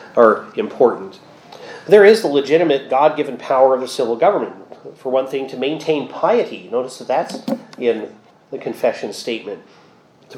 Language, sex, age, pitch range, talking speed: English, male, 30-49, 120-155 Hz, 155 wpm